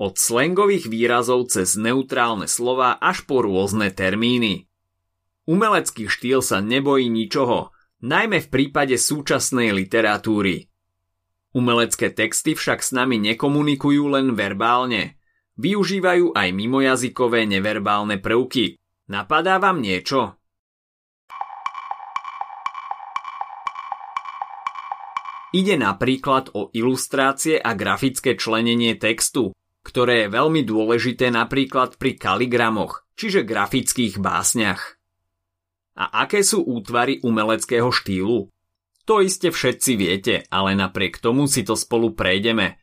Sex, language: male, Slovak